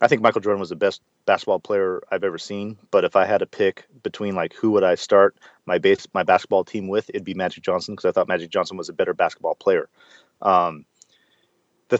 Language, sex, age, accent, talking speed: English, male, 30-49, American, 230 wpm